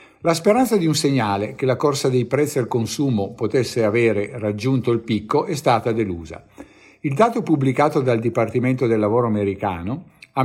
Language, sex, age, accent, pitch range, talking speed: Italian, male, 50-69, native, 115-150 Hz, 165 wpm